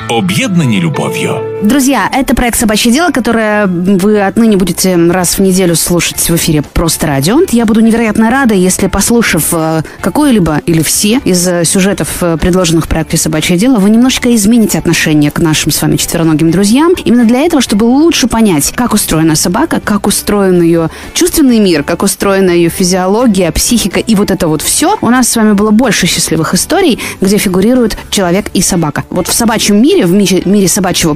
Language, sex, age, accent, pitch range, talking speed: Russian, female, 20-39, native, 175-240 Hz, 175 wpm